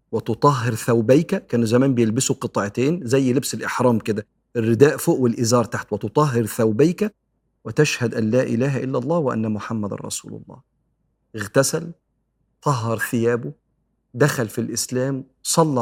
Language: Arabic